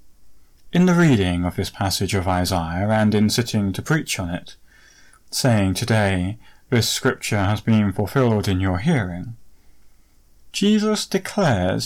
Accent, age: British, 30-49